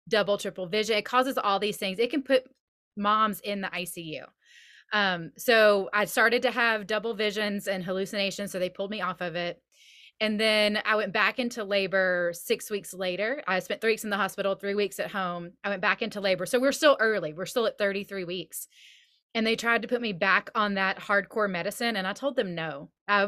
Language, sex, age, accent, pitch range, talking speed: English, female, 20-39, American, 185-225 Hz, 215 wpm